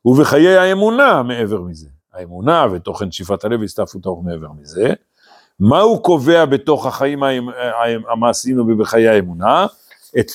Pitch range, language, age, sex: 105-165 Hz, Hebrew, 50-69, male